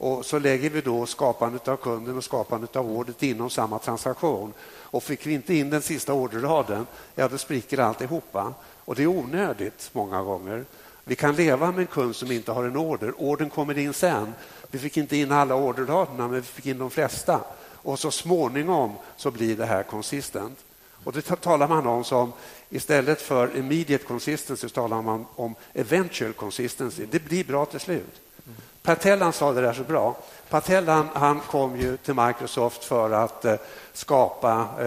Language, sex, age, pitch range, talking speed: English, male, 60-79, 115-145 Hz, 180 wpm